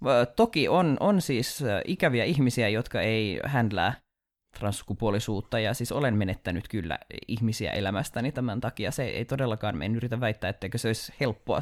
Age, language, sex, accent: 20-39, Finnish, male, native